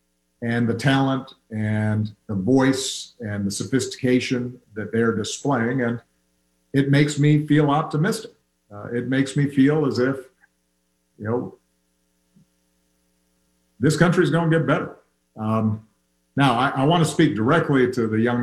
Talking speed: 145 wpm